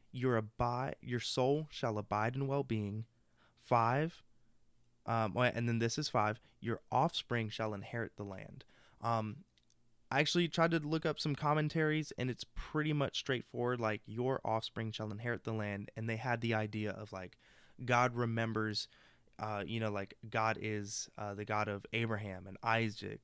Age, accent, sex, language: 20-39, American, male, English